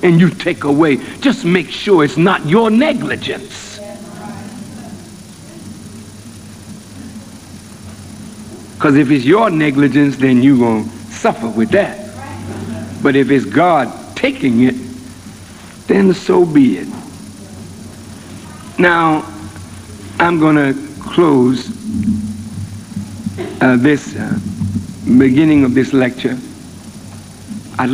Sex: male